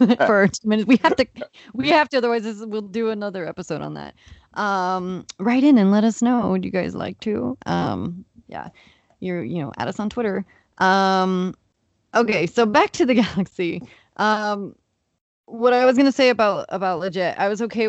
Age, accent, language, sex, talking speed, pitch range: 20-39, American, English, female, 180 wpm, 170-215 Hz